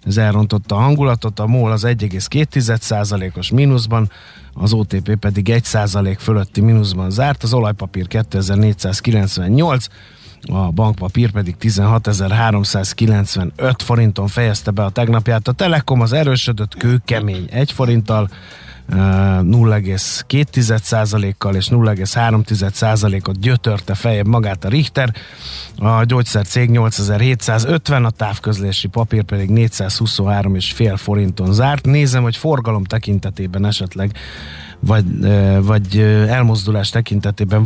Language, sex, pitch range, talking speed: Hungarian, male, 100-120 Hz, 100 wpm